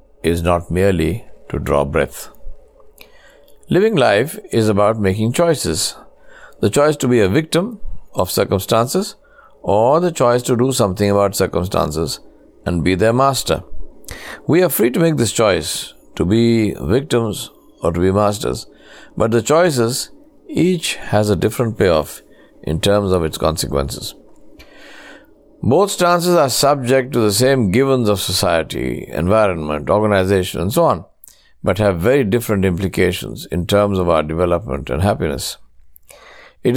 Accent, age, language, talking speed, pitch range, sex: Indian, 60-79, English, 140 wpm, 95-140 Hz, male